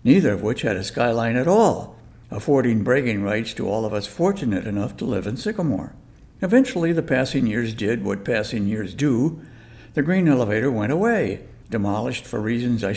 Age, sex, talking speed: 60-79, male, 180 wpm